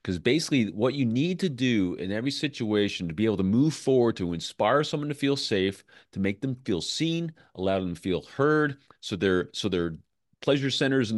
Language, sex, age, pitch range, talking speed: English, male, 30-49, 100-145 Hz, 205 wpm